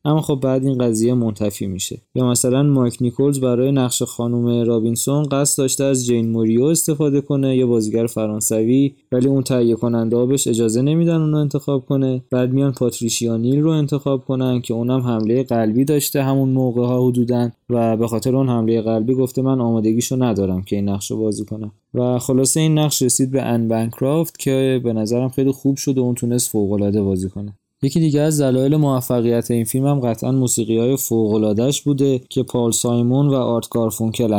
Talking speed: 180 wpm